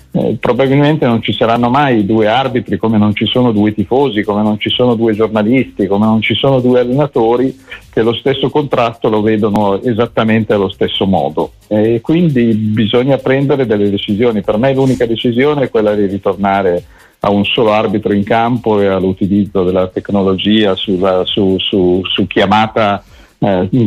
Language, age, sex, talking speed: Italian, 50-69, male, 165 wpm